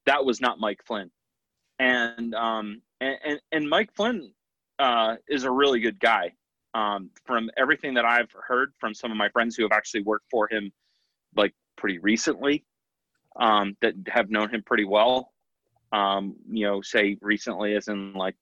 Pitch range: 105-130 Hz